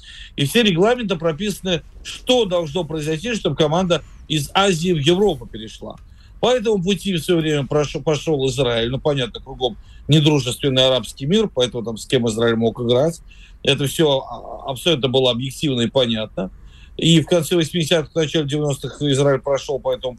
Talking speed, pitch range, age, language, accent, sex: 160 wpm, 130-185 Hz, 40-59, Russian, native, male